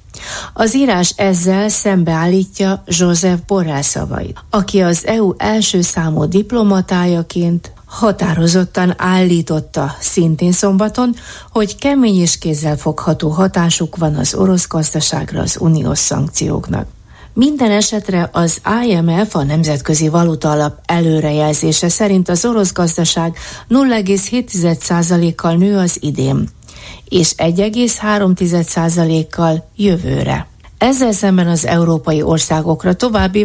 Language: Hungarian